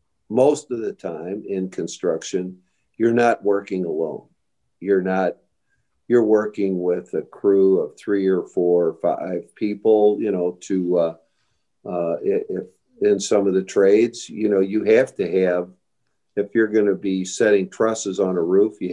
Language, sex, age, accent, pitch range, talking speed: English, male, 50-69, American, 95-115 Hz, 160 wpm